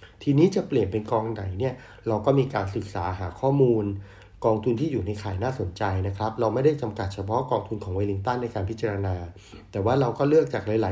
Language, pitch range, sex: Thai, 100-125 Hz, male